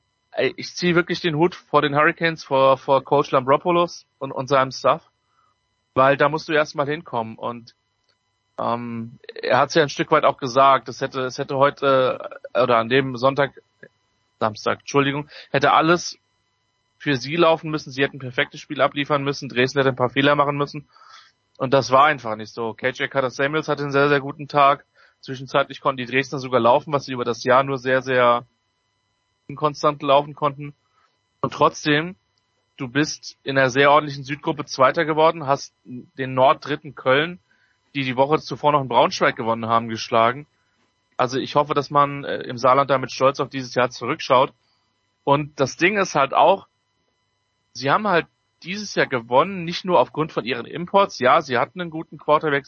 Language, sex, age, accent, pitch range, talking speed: German, male, 30-49, German, 125-150 Hz, 180 wpm